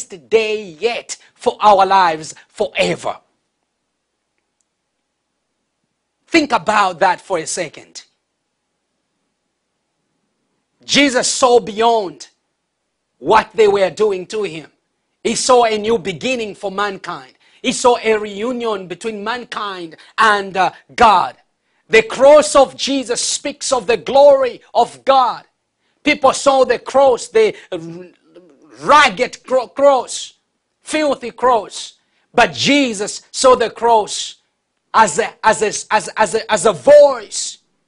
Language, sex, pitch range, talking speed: English, male, 215-255 Hz, 115 wpm